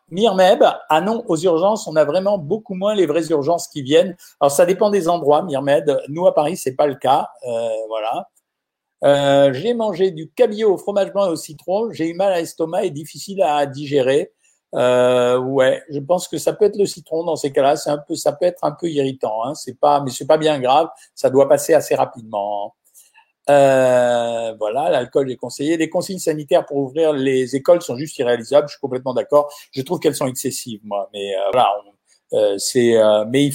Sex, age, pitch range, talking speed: male, 50-69, 135-170 Hz, 215 wpm